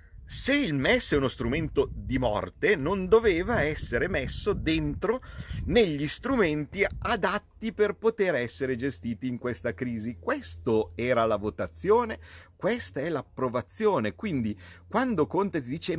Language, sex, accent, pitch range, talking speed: Italian, male, native, 105-180 Hz, 130 wpm